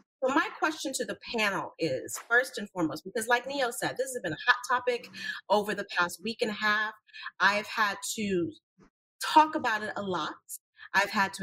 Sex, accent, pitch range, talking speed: female, American, 185-255 Hz, 200 wpm